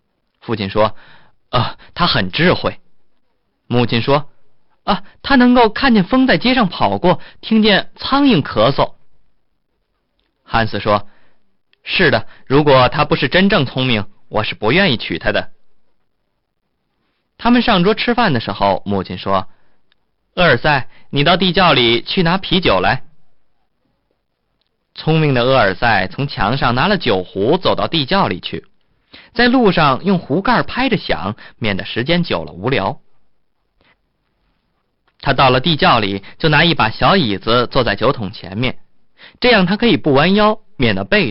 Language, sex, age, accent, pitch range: Chinese, male, 20-39, native, 115-195 Hz